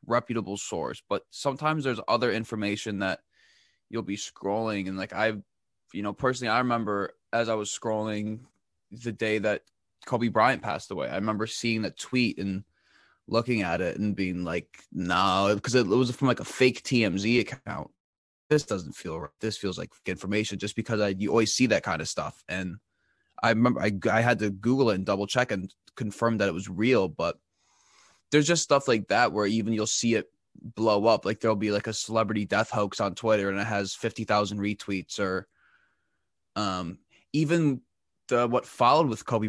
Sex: male